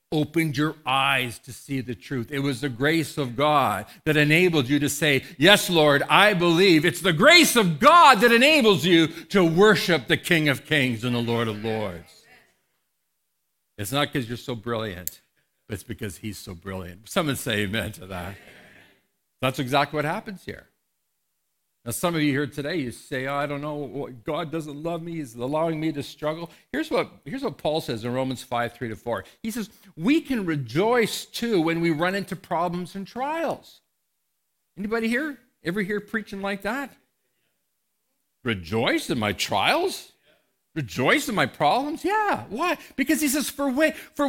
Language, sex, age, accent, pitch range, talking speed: English, male, 60-79, American, 135-225 Hz, 175 wpm